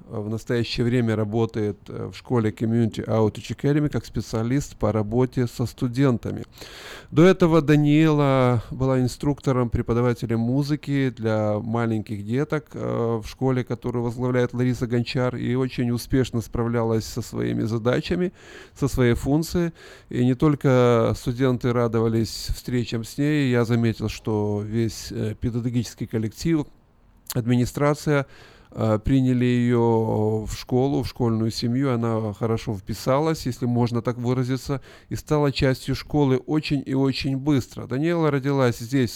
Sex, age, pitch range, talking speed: male, 20-39, 115-135 Hz, 125 wpm